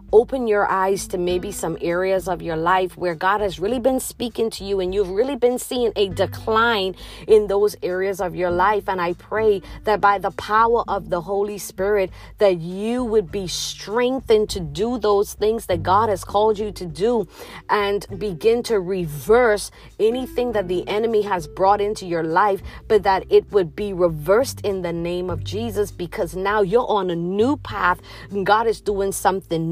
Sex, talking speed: female, 190 wpm